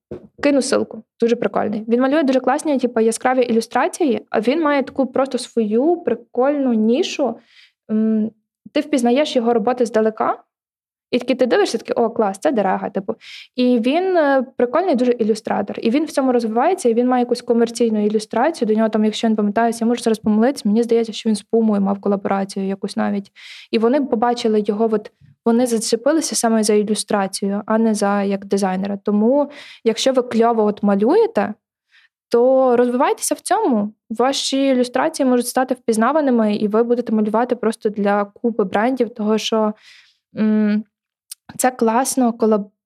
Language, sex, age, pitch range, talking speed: Ukrainian, female, 20-39, 215-250 Hz, 160 wpm